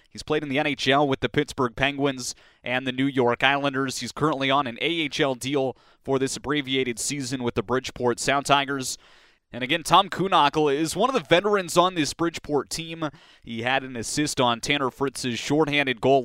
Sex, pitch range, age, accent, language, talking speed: male, 125-155 Hz, 30-49, American, English, 190 wpm